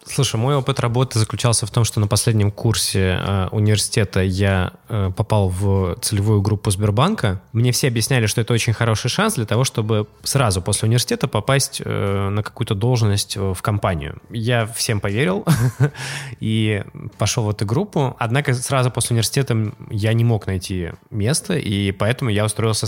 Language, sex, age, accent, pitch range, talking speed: Russian, male, 20-39, native, 95-125 Hz, 165 wpm